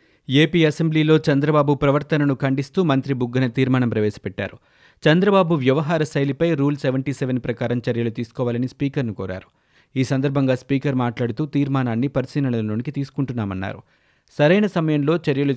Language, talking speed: Telugu, 115 wpm